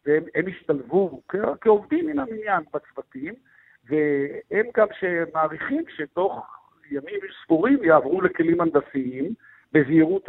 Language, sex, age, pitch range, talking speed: Hebrew, male, 60-79, 140-180 Hz, 95 wpm